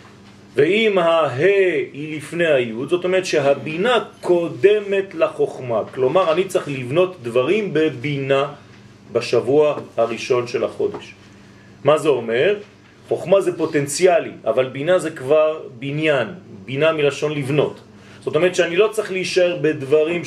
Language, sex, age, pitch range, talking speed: French, male, 40-59, 145-220 Hz, 120 wpm